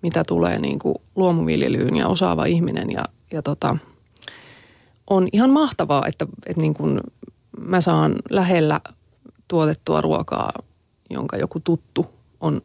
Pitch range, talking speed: 155-185 Hz, 125 wpm